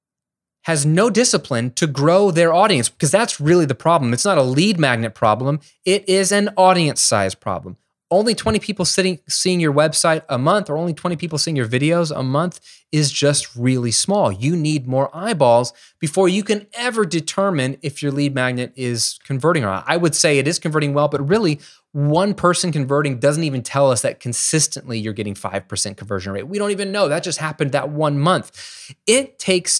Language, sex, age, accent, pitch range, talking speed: English, male, 20-39, American, 140-185 Hz, 195 wpm